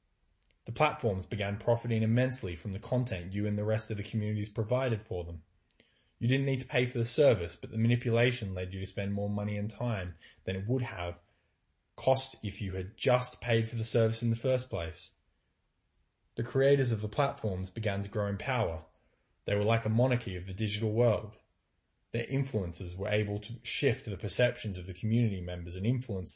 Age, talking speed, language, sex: 20-39, 200 wpm, English, male